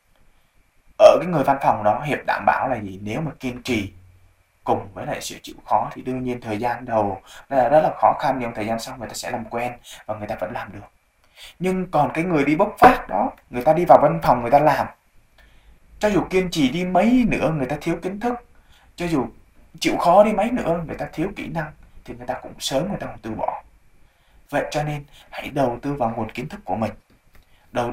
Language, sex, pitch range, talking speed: Vietnamese, male, 110-160 Hz, 235 wpm